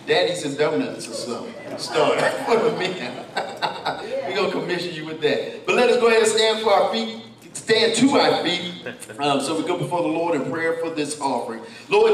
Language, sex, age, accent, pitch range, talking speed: English, male, 50-69, American, 150-225 Hz, 215 wpm